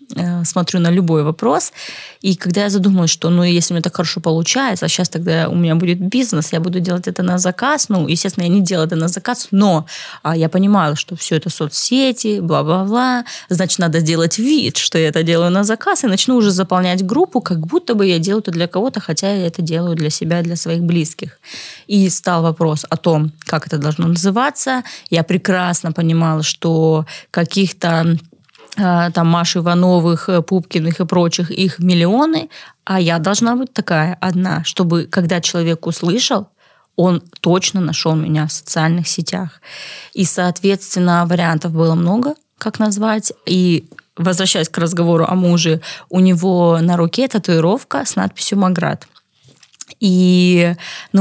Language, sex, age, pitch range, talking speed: Russian, female, 20-39, 165-195 Hz, 165 wpm